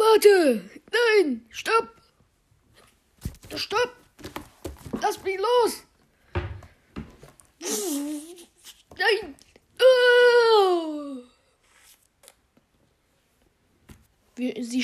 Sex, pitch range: female, 195-270 Hz